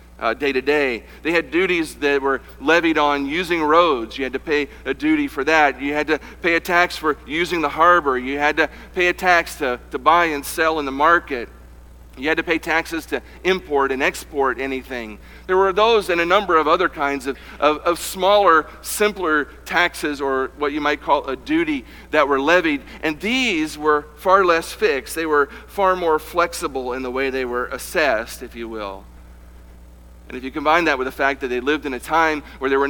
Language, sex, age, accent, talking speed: English, male, 50-69, American, 210 wpm